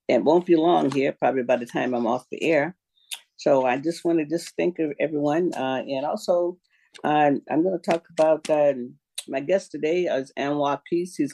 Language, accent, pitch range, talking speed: English, American, 120-150 Hz, 200 wpm